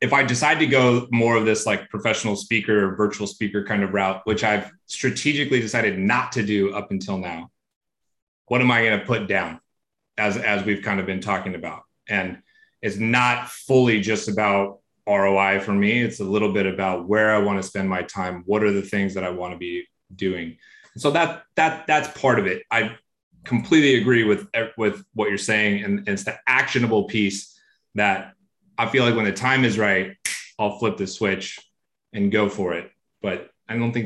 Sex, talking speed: male, 200 wpm